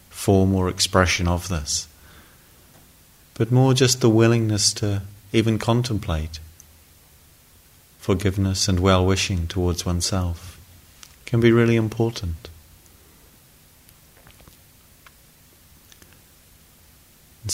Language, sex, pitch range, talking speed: English, male, 85-105 Hz, 80 wpm